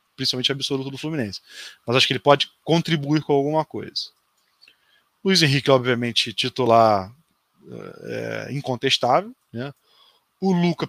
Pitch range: 125-155 Hz